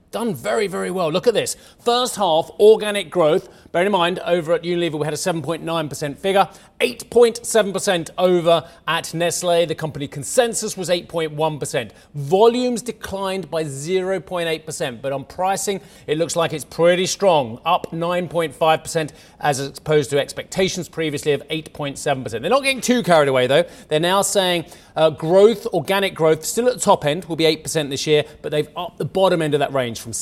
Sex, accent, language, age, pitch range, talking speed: male, British, English, 30-49, 145-185 Hz, 175 wpm